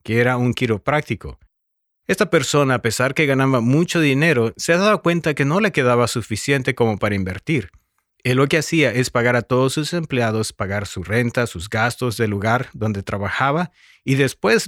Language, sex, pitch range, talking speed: English, male, 110-150 Hz, 185 wpm